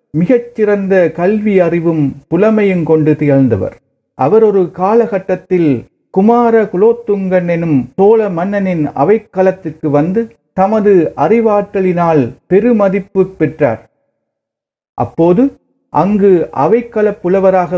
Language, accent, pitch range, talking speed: Tamil, native, 155-215 Hz, 80 wpm